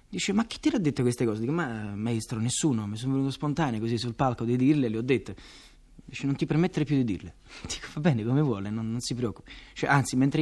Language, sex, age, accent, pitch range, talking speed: Italian, male, 30-49, native, 120-165 Hz, 250 wpm